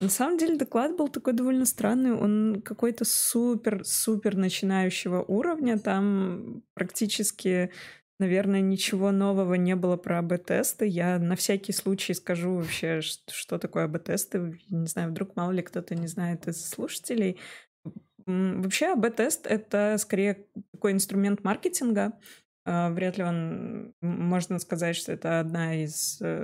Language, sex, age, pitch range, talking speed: Russian, female, 20-39, 175-215 Hz, 135 wpm